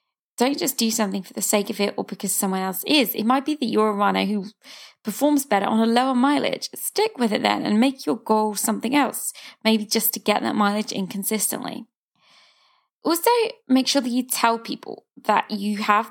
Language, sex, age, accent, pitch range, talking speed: English, female, 20-39, British, 210-265 Hz, 210 wpm